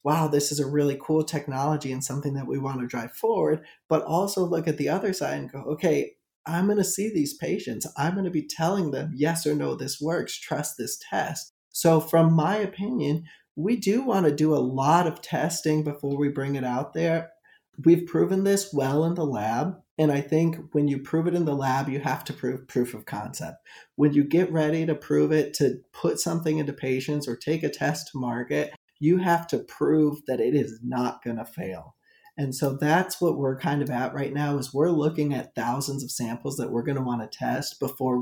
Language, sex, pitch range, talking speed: English, male, 135-160 Hz, 225 wpm